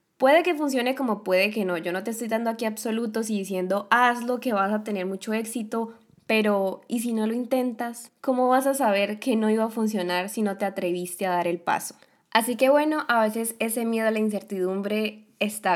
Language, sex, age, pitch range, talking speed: Spanish, female, 10-29, 195-245 Hz, 215 wpm